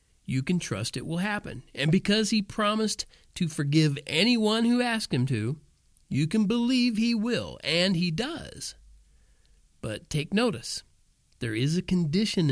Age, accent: 40-59, American